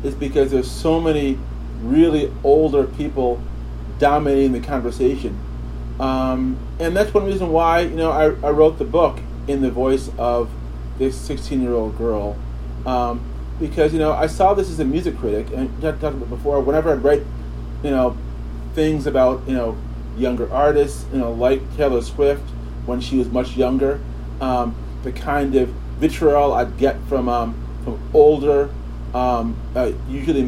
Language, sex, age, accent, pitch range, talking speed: English, male, 30-49, American, 115-145 Hz, 165 wpm